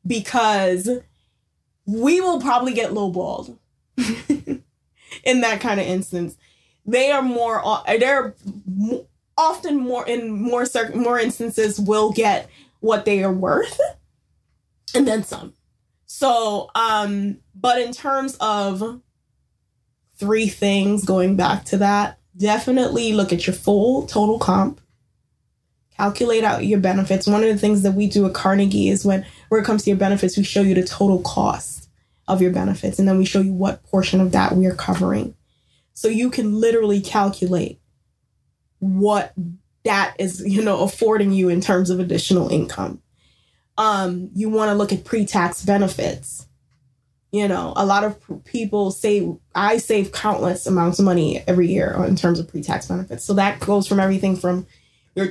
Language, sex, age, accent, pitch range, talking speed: English, female, 10-29, American, 190-225 Hz, 155 wpm